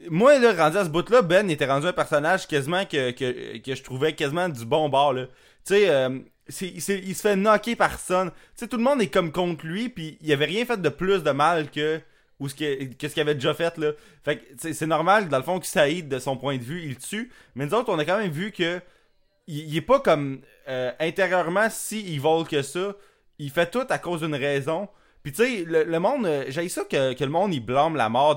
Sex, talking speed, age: male, 265 wpm, 20-39